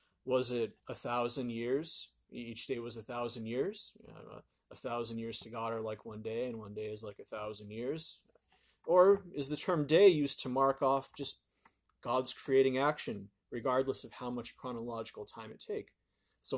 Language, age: English, 30-49